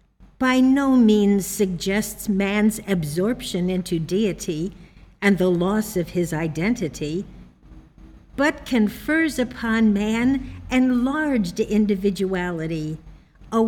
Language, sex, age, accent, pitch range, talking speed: English, female, 60-79, American, 175-245 Hz, 90 wpm